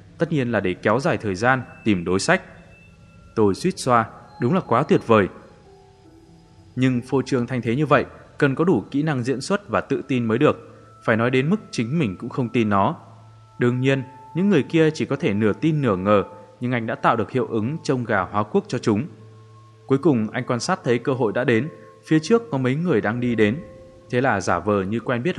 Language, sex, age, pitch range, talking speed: Vietnamese, male, 20-39, 110-135 Hz, 230 wpm